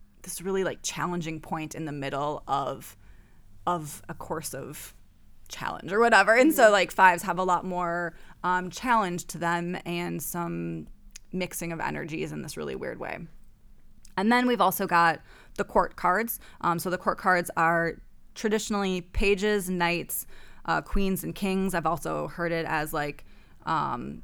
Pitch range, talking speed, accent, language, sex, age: 165-195 Hz, 165 wpm, American, English, female, 20-39